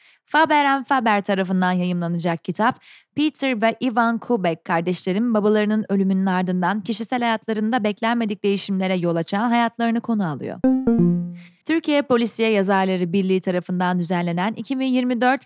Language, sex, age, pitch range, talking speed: Turkish, female, 30-49, 190-250 Hz, 115 wpm